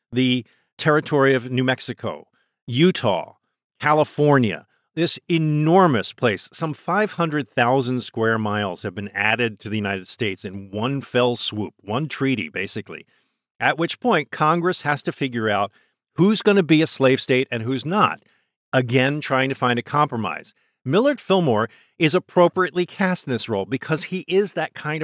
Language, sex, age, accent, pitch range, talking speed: English, male, 50-69, American, 115-165 Hz, 155 wpm